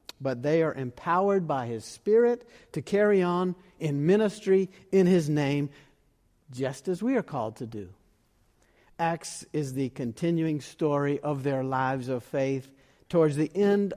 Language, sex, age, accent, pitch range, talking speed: English, male, 50-69, American, 135-180 Hz, 150 wpm